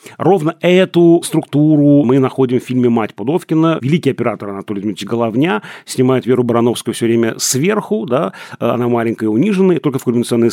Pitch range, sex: 115-140 Hz, male